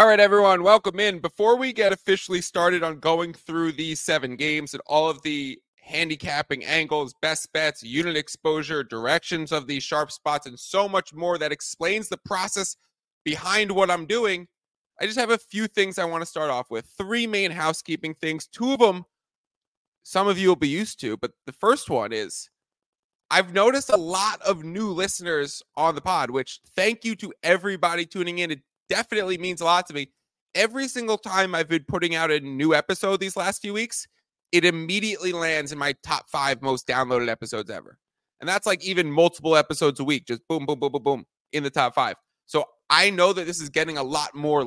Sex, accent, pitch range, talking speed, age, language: male, American, 150-195 Hz, 200 wpm, 20-39, English